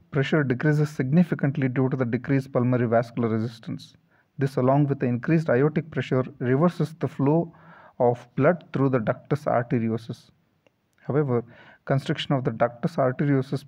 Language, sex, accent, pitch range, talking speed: English, male, Indian, 125-155 Hz, 140 wpm